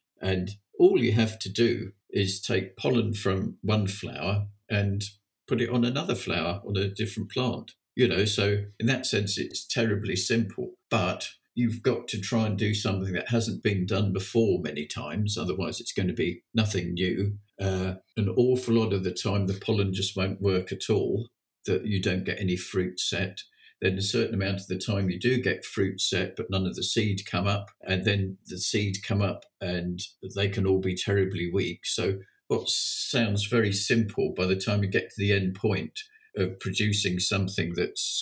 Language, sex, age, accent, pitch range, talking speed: English, male, 50-69, British, 95-110 Hz, 195 wpm